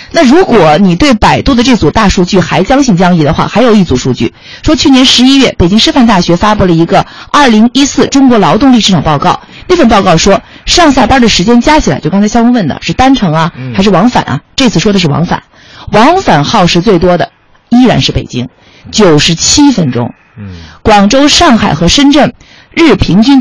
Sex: female